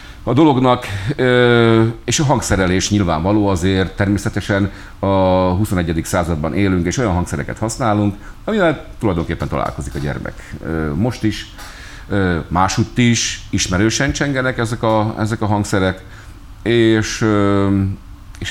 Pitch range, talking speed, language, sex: 85-105 Hz, 110 wpm, Hungarian, male